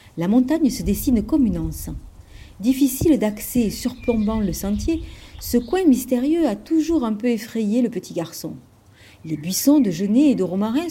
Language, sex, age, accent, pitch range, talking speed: French, female, 40-59, French, 180-250 Hz, 170 wpm